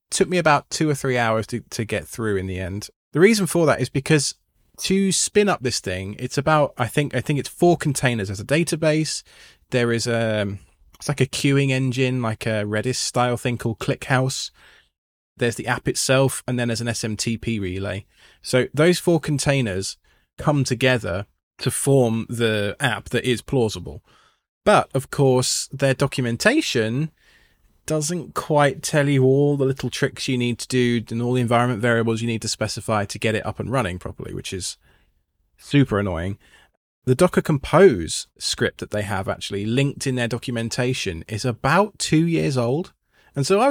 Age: 20-39